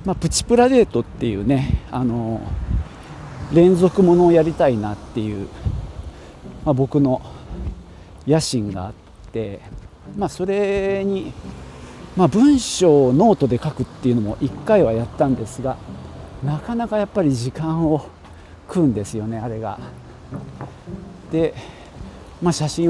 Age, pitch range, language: 40-59, 105-165 Hz, Japanese